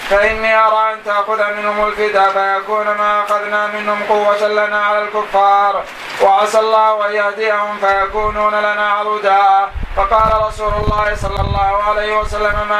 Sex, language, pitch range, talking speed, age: male, Arabic, 205-210 Hz, 135 wpm, 20-39